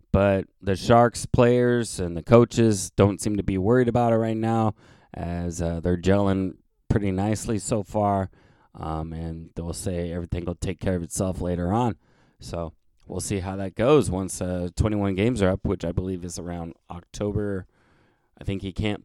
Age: 20-39